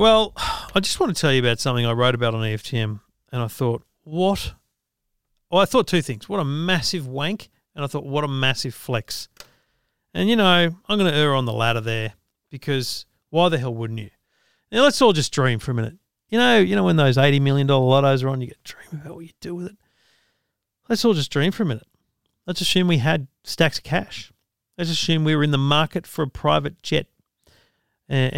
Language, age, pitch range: English, 40-59, 125-165 Hz